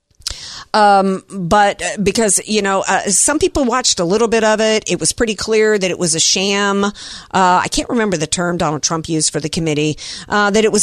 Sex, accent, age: female, American, 50-69